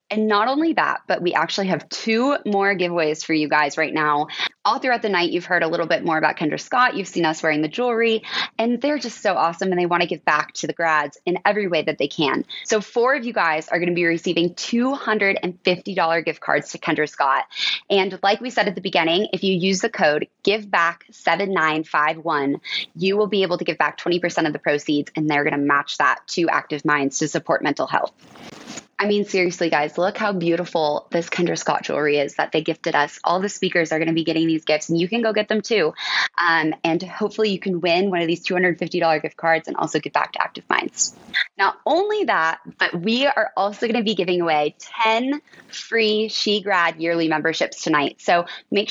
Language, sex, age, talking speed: English, female, 20-39, 220 wpm